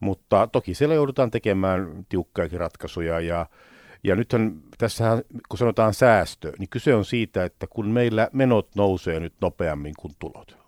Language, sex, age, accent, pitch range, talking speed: Finnish, male, 60-79, native, 90-120 Hz, 150 wpm